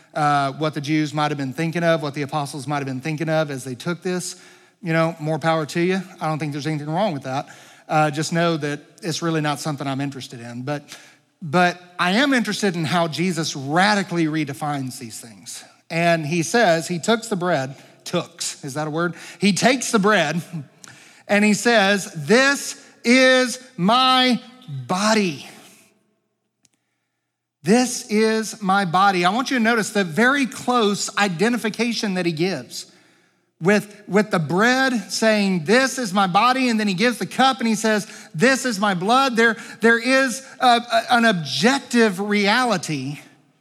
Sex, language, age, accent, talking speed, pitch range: male, English, 40-59, American, 170 wpm, 155-220 Hz